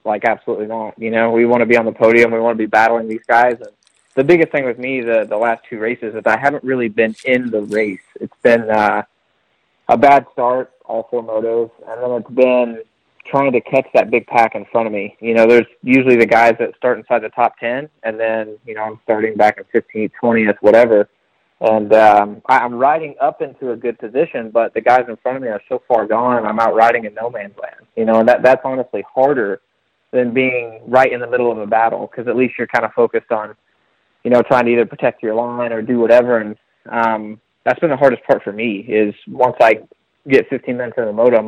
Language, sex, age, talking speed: English, male, 20-39, 240 wpm